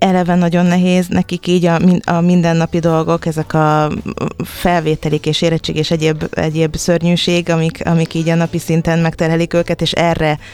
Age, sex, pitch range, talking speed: 20-39, female, 150-170 Hz, 160 wpm